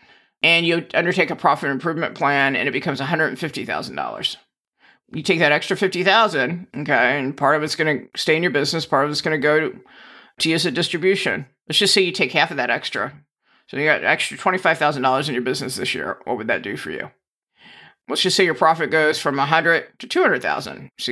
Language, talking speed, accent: English, 215 wpm, American